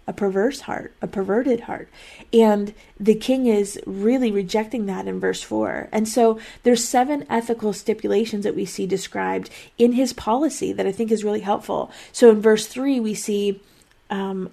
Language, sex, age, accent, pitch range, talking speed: English, female, 30-49, American, 195-230 Hz, 175 wpm